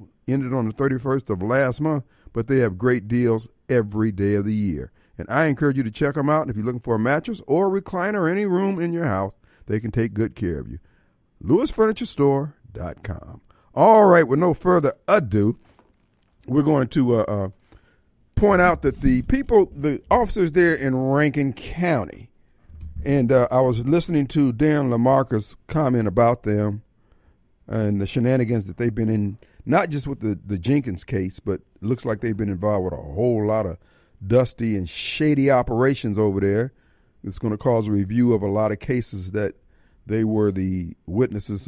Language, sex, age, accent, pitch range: Japanese, male, 50-69, American, 105-140 Hz